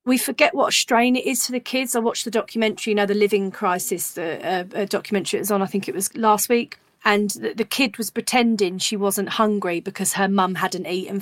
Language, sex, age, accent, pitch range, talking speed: English, female, 40-59, British, 190-230 Hz, 245 wpm